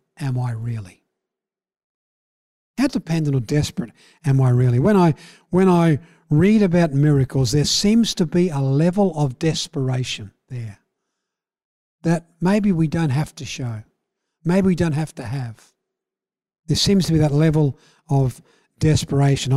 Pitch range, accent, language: 130-165 Hz, Australian, English